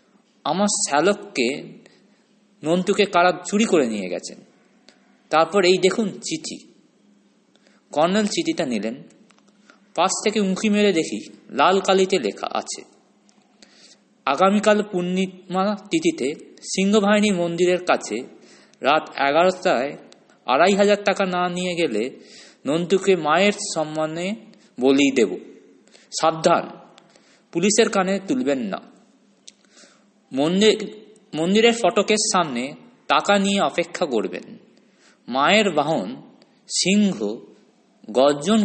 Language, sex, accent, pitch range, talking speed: Bengali, male, native, 170-210 Hz, 90 wpm